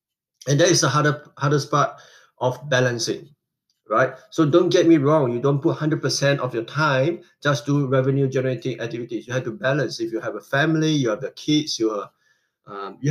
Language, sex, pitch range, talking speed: English, male, 130-165 Hz, 200 wpm